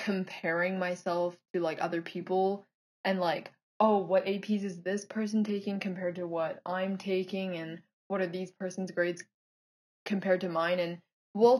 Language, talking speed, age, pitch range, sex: English, 160 wpm, 20-39, 175-200 Hz, female